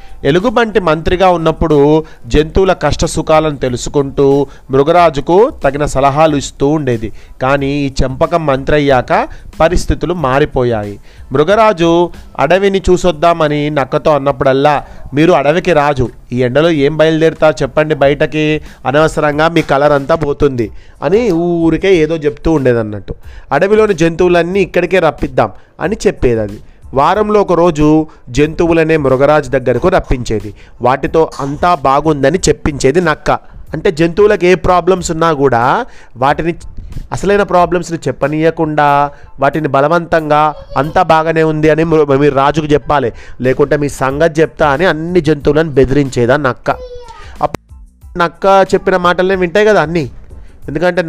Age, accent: 30-49, native